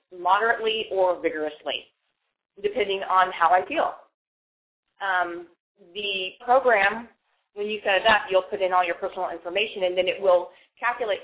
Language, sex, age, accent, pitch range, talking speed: English, female, 30-49, American, 180-220 Hz, 150 wpm